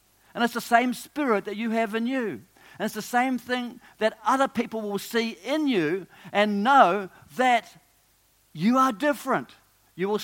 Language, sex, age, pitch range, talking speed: English, male, 50-69, 125-200 Hz, 175 wpm